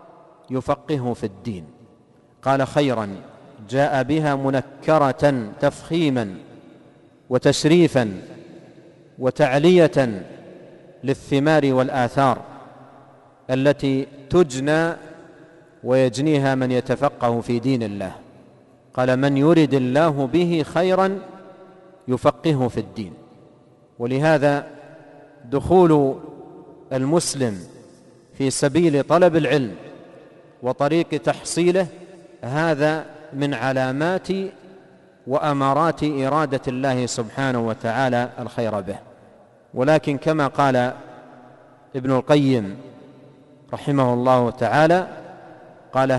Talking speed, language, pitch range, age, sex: 75 wpm, Arabic, 125-160 Hz, 40-59, male